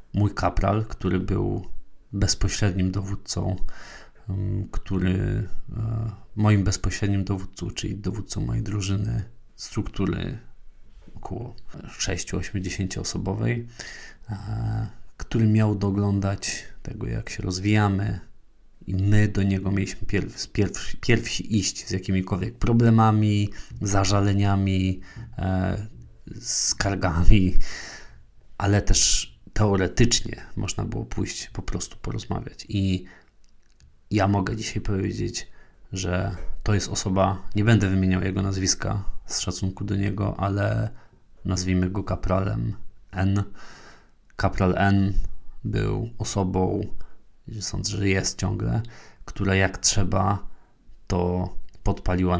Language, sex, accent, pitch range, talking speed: Polish, male, native, 95-105 Hz, 95 wpm